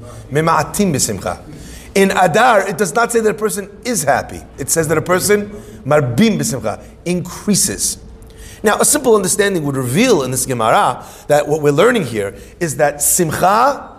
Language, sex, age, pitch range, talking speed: English, male, 40-59, 145-215 Hz, 145 wpm